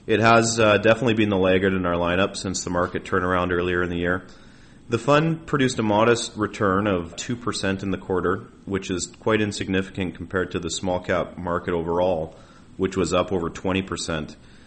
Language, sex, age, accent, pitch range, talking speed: English, male, 30-49, American, 85-105 Hz, 190 wpm